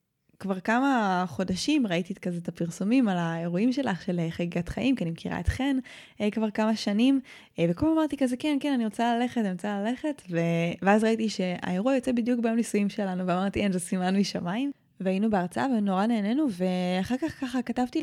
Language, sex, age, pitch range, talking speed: Hebrew, female, 20-39, 180-240 Hz, 185 wpm